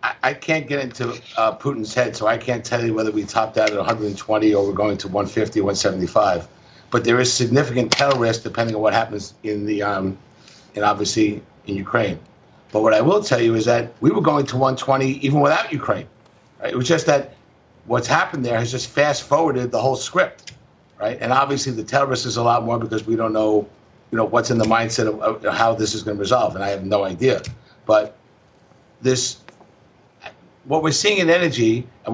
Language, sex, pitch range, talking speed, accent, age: English, male, 115-145 Hz, 205 wpm, American, 50-69